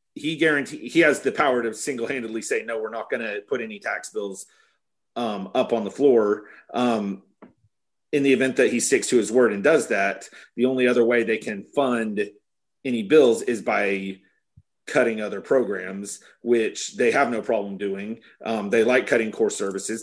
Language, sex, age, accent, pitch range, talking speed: English, male, 30-49, American, 105-130 Hz, 190 wpm